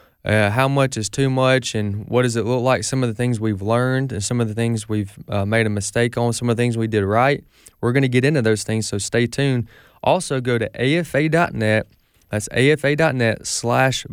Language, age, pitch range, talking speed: English, 20-39, 105-125 Hz, 225 wpm